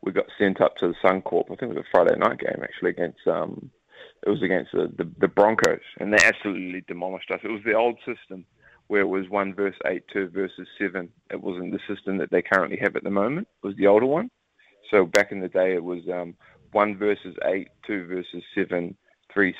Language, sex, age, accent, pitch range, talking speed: English, male, 20-39, Australian, 95-105 Hz, 230 wpm